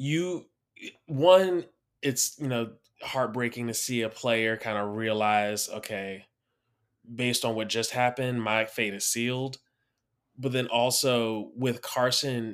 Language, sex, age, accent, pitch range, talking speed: English, male, 20-39, American, 110-125 Hz, 135 wpm